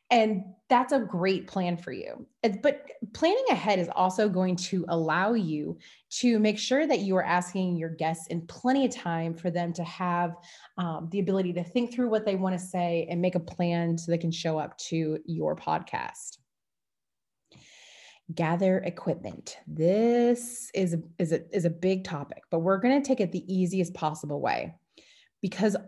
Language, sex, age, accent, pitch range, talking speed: English, female, 20-39, American, 170-200 Hz, 175 wpm